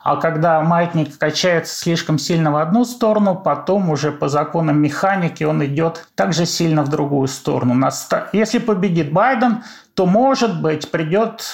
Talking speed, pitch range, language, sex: 145 wpm, 160-215 Hz, Russian, male